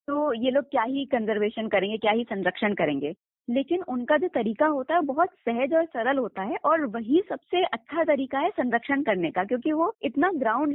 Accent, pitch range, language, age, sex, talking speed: native, 235-300 Hz, Hindi, 20-39, female, 200 wpm